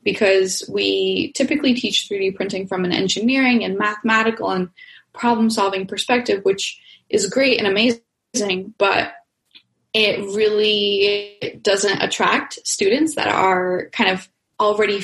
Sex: female